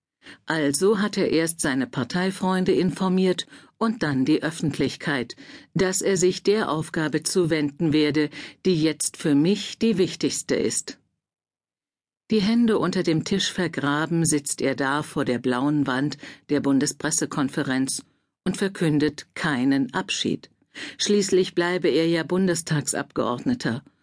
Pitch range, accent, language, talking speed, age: 145-190 Hz, German, German, 120 wpm, 50-69